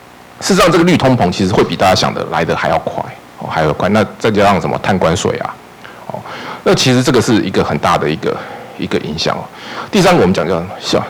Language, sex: Chinese, male